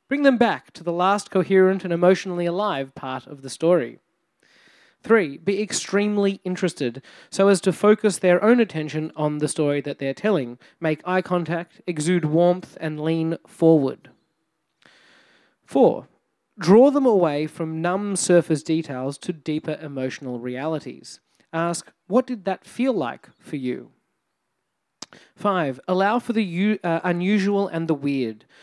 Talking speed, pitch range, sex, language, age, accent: 145 wpm, 150-195 Hz, male, English, 30-49, Australian